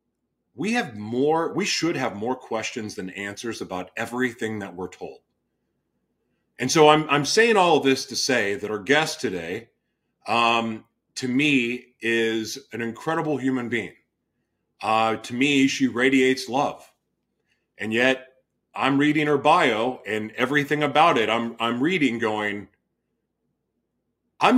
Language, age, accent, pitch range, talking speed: English, 30-49, American, 115-150 Hz, 140 wpm